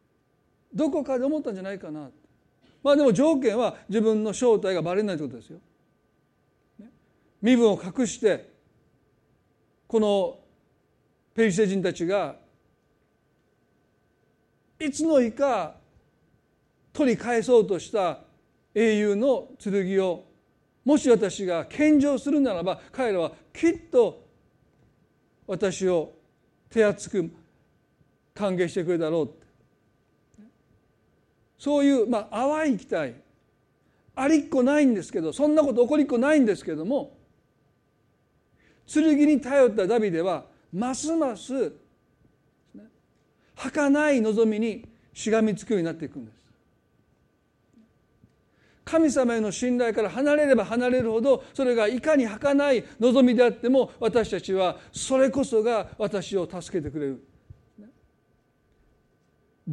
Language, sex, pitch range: Japanese, male, 195-275 Hz